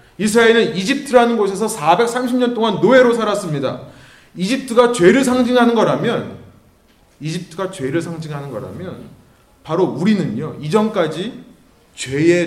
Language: Korean